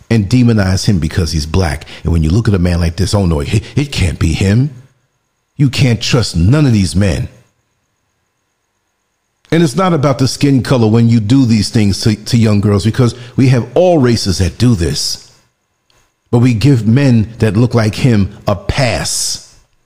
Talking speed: 185 wpm